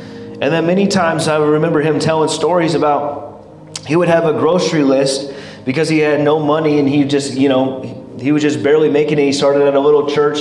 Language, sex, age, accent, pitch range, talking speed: English, male, 30-49, American, 145-200 Hz, 220 wpm